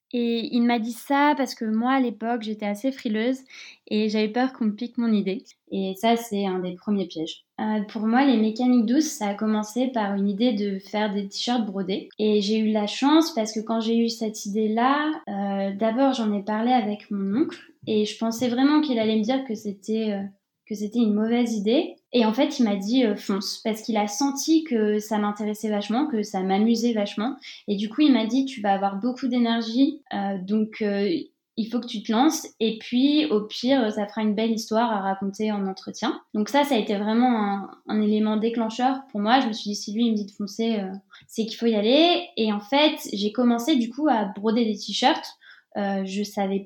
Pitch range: 210-250 Hz